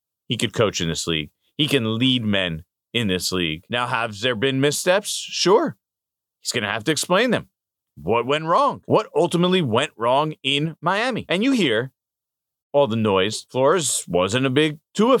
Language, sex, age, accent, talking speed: English, male, 40-59, American, 180 wpm